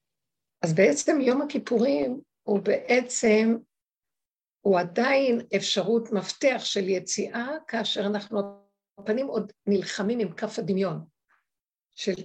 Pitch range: 190-235 Hz